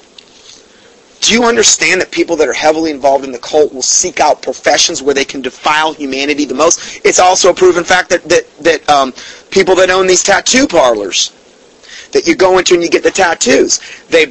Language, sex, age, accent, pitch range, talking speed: English, male, 30-49, American, 150-185 Hz, 200 wpm